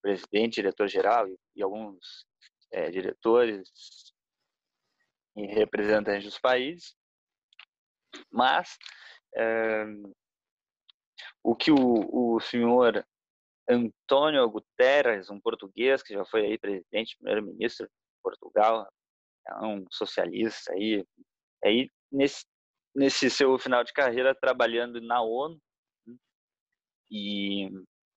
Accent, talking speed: Brazilian, 95 wpm